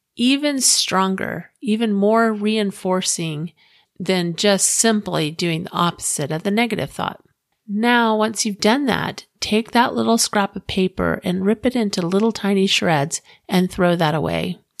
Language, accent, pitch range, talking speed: English, American, 180-220 Hz, 150 wpm